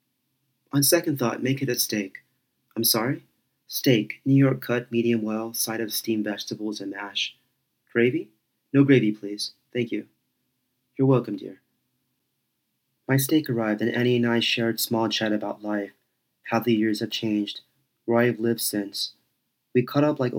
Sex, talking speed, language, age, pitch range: male, 160 wpm, English, 30-49, 105-125 Hz